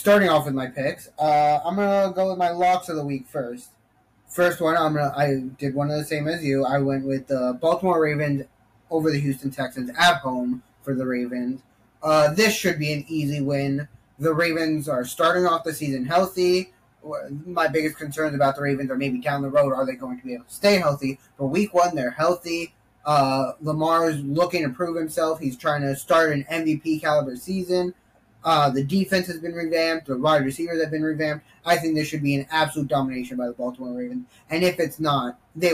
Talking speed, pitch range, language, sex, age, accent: 215 wpm, 130-165 Hz, English, male, 10-29, American